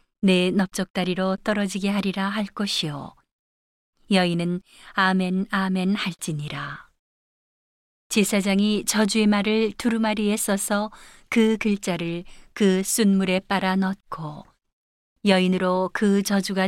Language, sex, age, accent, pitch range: Korean, female, 40-59, native, 185-210 Hz